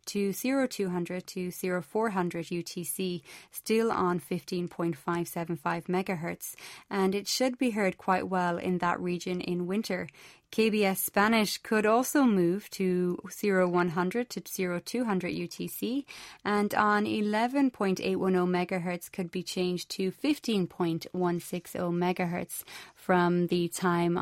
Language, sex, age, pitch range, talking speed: English, female, 20-39, 175-210 Hz, 110 wpm